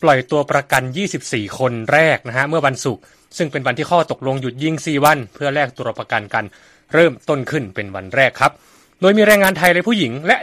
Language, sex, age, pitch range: Thai, male, 20-39, 115-160 Hz